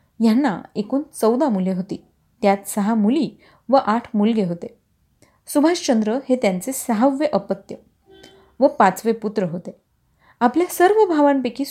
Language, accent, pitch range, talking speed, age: Marathi, native, 205-270 Hz, 125 wpm, 30-49